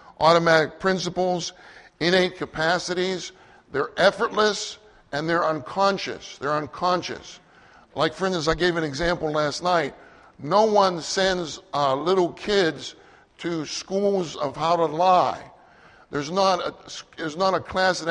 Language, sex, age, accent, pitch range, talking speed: English, male, 60-79, American, 155-190 Hz, 135 wpm